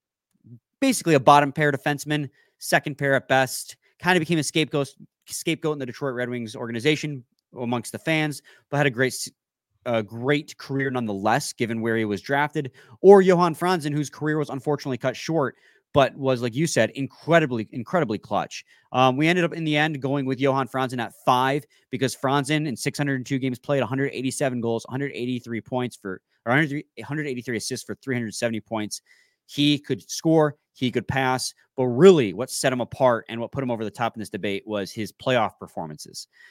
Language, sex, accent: English, male, American